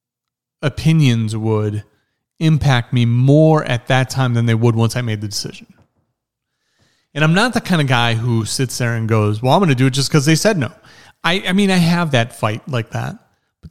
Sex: male